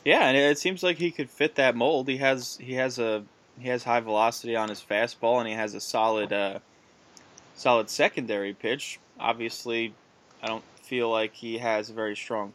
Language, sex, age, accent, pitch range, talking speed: English, male, 10-29, American, 105-125 Hz, 195 wpm